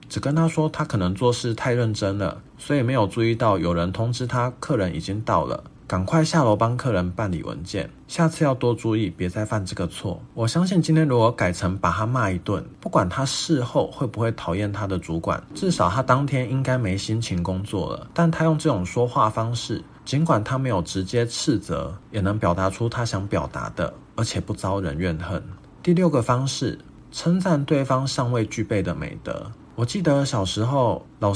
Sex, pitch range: male, 100-140 Hz